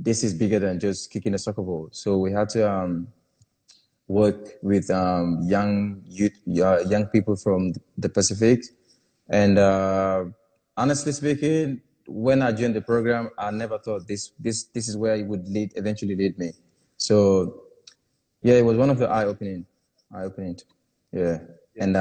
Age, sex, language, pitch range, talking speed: 20-39, male, English, 95-110 Hz, 160 wpm